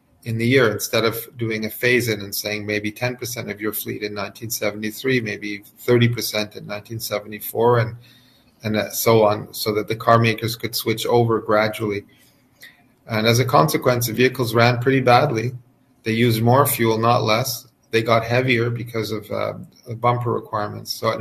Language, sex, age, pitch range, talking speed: English, male, 40-59, 110-120 Hz, 170 wpm